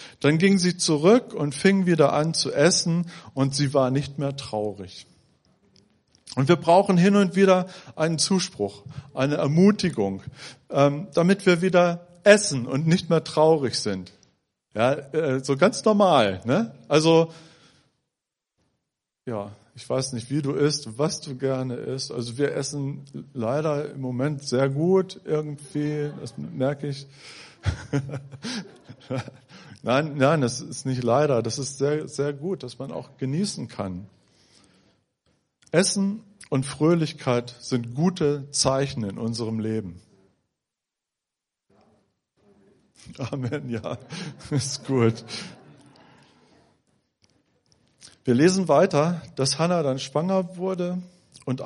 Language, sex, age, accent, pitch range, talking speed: German, male, 40-59, German, 125-165 Hz, 120 wpm